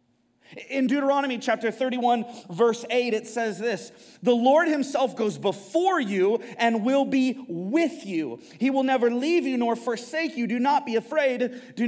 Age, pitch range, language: 30-49, 230-285 Hz, English